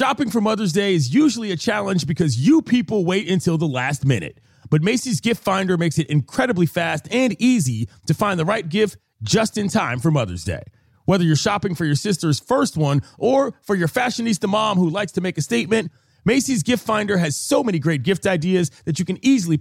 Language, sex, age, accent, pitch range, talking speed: English, male, 30-49, American, 150-215 Hz, 210 wpm